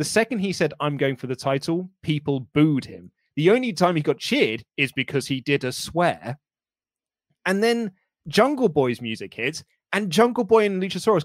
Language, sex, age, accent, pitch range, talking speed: English, male, 30-49, British, 130-190 Hz, 185 wpm